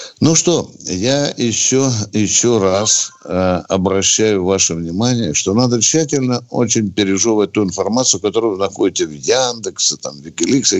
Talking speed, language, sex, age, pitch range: 135 wpm, Russian, male, 60-79, 100-150 Hz